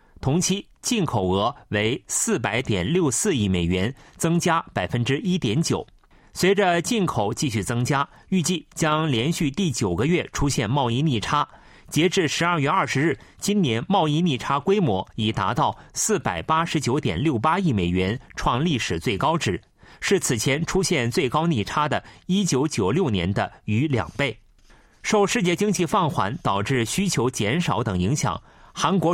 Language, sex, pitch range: Chinese, male, 120-175 Hz